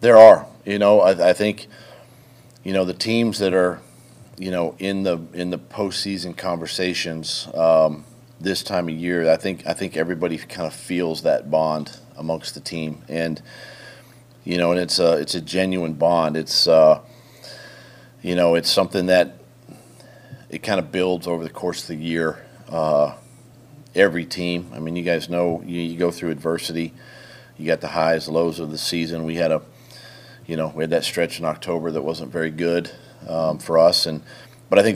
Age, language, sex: 40-59, English, male